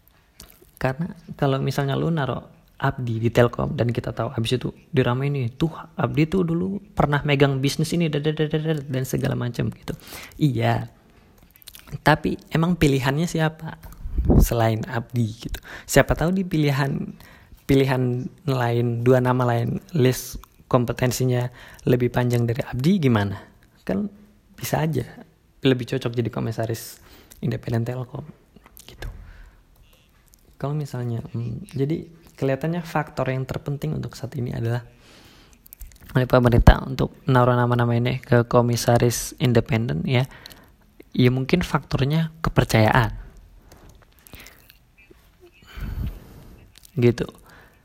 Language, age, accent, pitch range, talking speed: Indonesian, 20-39, native, 120-145 Hz, 110 wpm